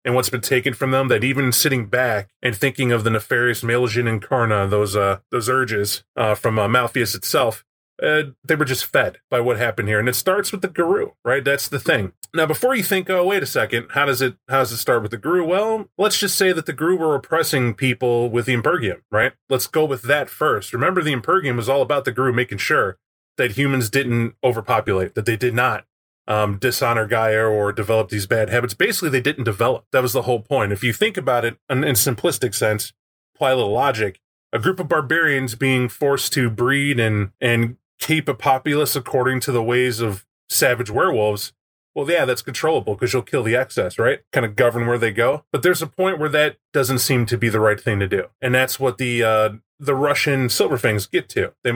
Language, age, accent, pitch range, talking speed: English, 30-49, American, 115-140 Hz, 225 wpm